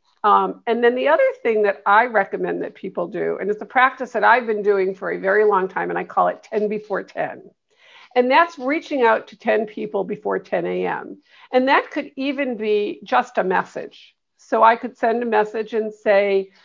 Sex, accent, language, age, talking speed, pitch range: female, American, English, 50-69, 210 wpm, 210-265 Hz